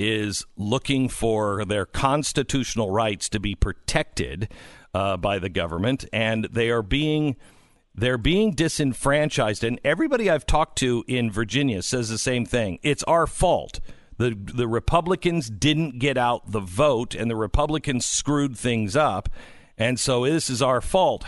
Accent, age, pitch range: American, 50-69, 105-140 Hz